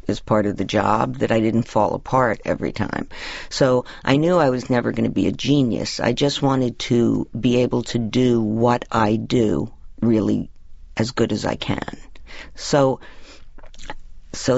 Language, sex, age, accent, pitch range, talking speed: English, female, 50-69, American, 110-130 Hz, 175 wpm